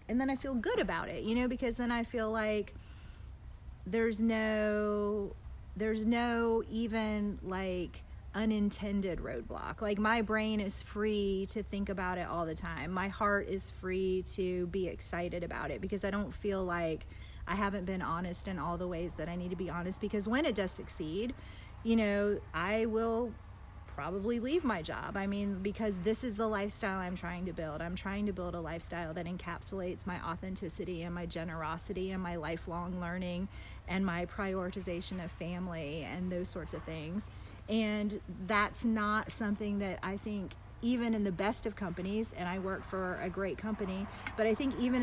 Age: 30-49